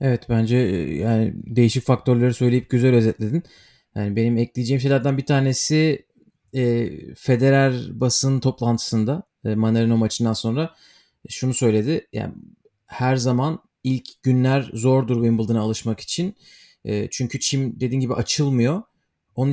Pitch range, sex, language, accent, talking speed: 120-155 Hz, male, Turkish, native, 125 wpm